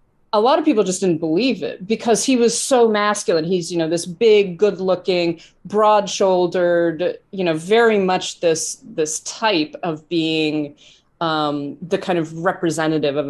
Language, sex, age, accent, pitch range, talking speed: English, female, 30-49, American, 165-210 Hz, 165 wpm